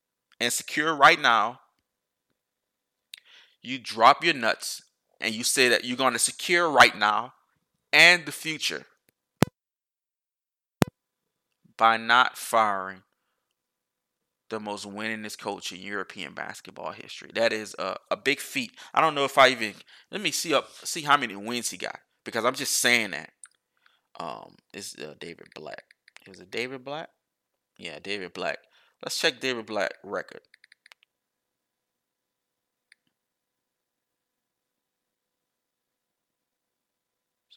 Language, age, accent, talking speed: English, 20-39, American, 125 wpm